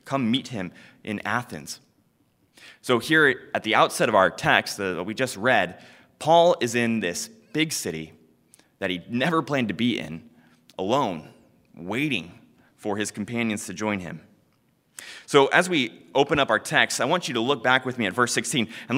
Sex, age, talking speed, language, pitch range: male, 20-39, 185 wpm, English, 100-135 Hz